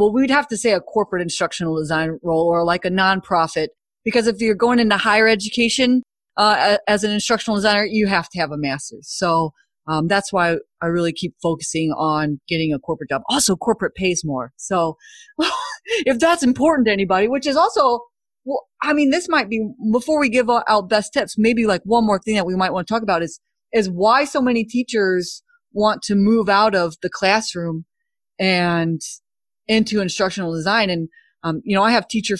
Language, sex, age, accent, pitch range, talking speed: English, female, 30-49, American, 170-225 Hz, 195 wpm